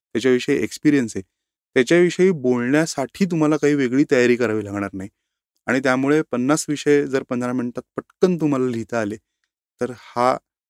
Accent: native